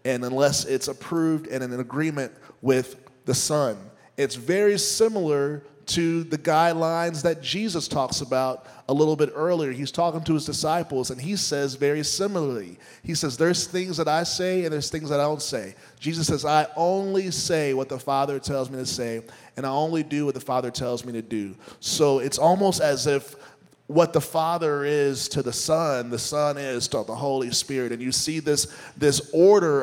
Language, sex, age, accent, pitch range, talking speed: English, male, 30-49, American, 130-160 Hz, 195 wpm